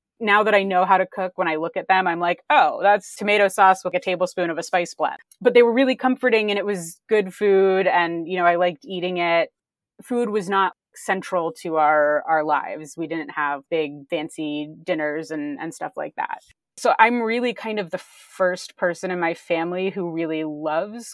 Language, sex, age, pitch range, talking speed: English, female, 30-49, 160-195 Hz, 215 wpm